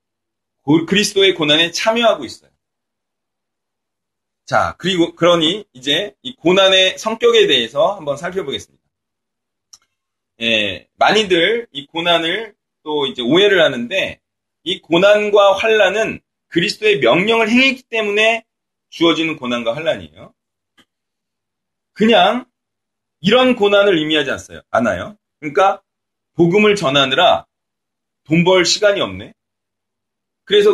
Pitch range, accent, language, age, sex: 160-225 Hz, native, Korean, 30-49, male